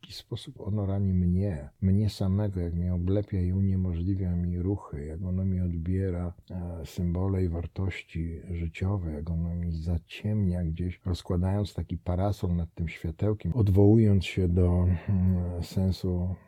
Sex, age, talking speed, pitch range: male, 50-69, 130 wpm, 85-95 Hz